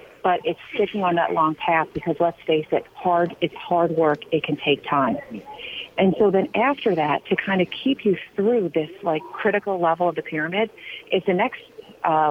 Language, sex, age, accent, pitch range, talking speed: English, female, 40-59, American, 160-205 Hz, 200 wpm